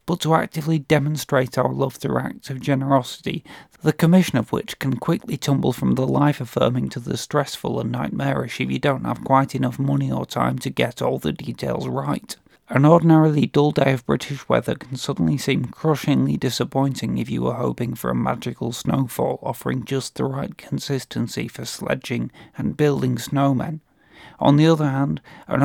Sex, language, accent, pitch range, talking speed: male, English, British, 130-150 Hz, 175 wpm